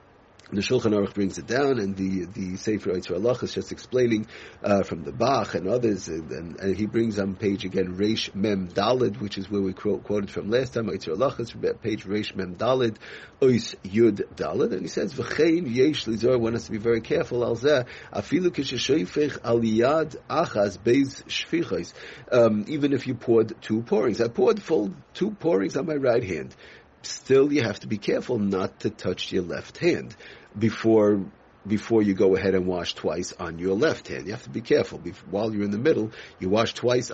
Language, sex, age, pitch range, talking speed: English, male, 50-69, 100-120 Hz, 195 wpm